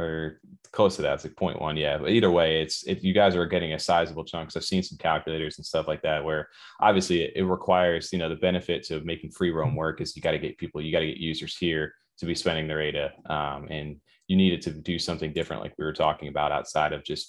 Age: 20-39